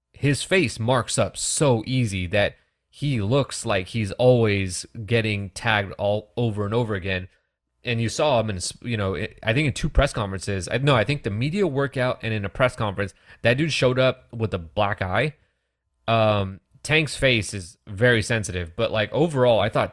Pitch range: 100-130 Hz